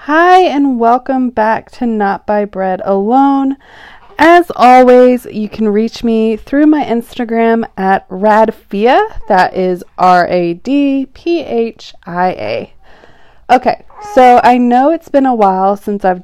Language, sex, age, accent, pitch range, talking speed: English, female, 20-39, American, 195-245 Hz, 145 wpm